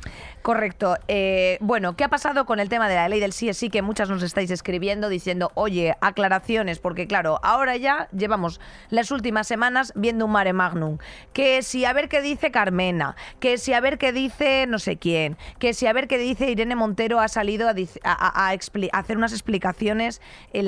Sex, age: female, 20-39